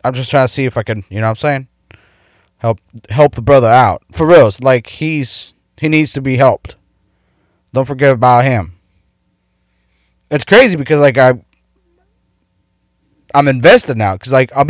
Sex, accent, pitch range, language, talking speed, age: male, American, 90-130 Hz, English, 175 wpm, 20-39